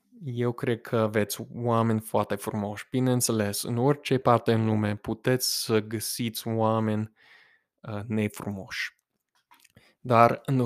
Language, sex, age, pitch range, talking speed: English, male, 20-39, 110-135 Hz, 115 wpm